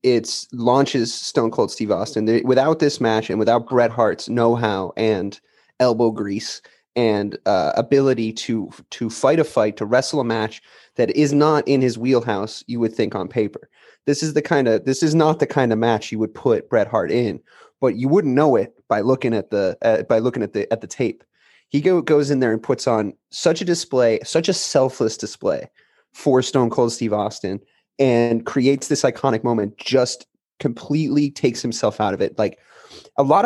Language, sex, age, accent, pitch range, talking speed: English, male, 30-49, American, 110-140 Hz, 200 wpm